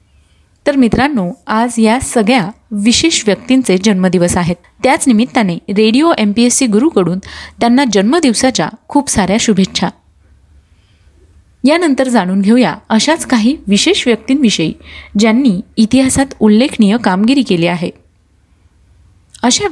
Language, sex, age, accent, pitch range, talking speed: Marathi, female, 30-49, native, 185-250 Hz, 105 wpm